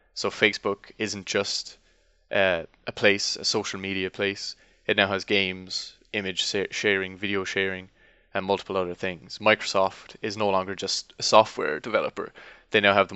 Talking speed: 160 wpm